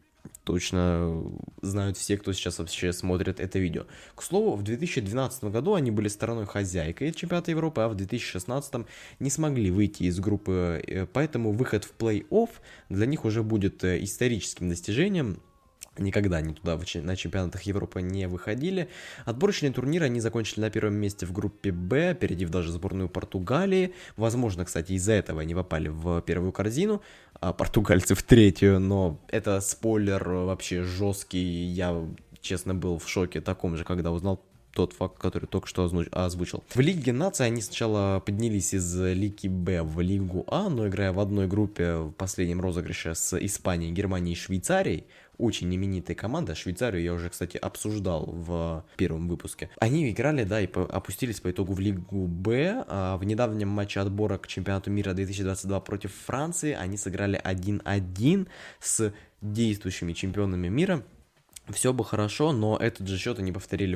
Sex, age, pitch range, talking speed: male, 20-39, 90-110 Hz, 160 wpm